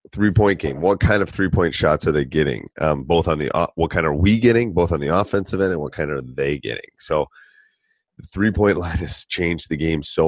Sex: male